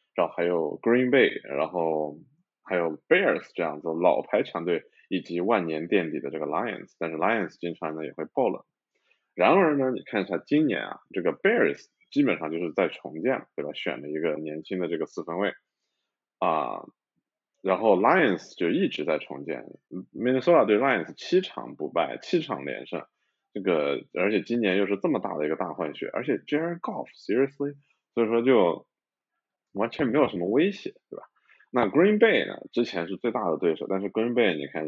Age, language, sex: 20-39, Chinese, male